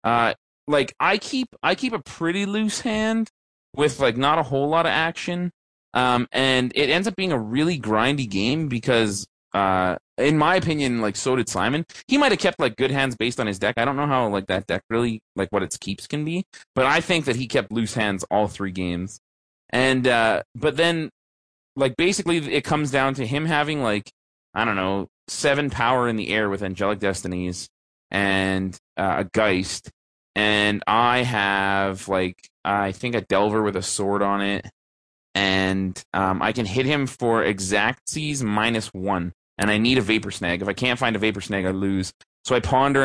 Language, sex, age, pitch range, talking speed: English, male, 30-49, 95-130 Hz, 200 wpm